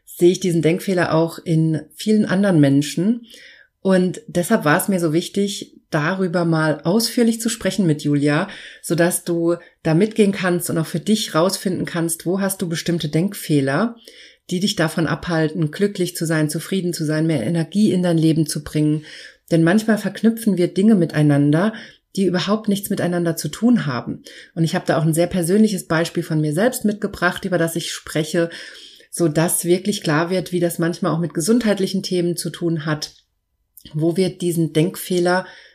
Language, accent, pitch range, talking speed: German, German, 155-190 Hz, 175 wpm